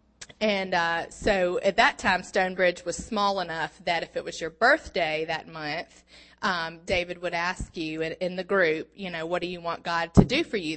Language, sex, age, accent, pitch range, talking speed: English, female, 20-39, American, 165-195 Hz, 210 wpm